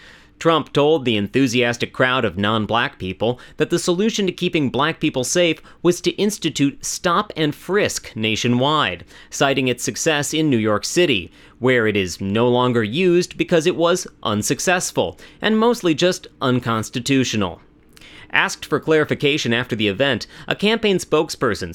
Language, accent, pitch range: English, American, 110-160 Hz